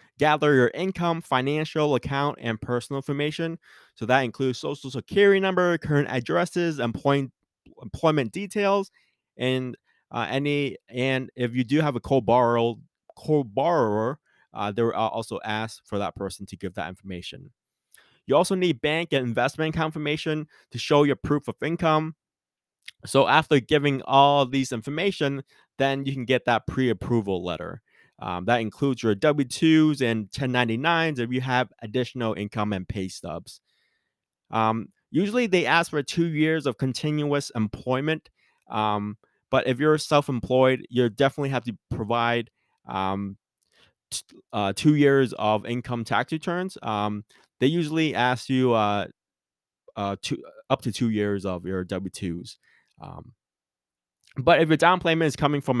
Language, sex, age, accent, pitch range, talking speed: English, male, 20-39, American, 115-150 Hz, 140 wpm